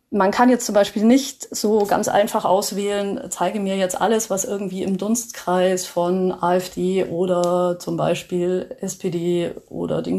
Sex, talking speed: female, 155 wpm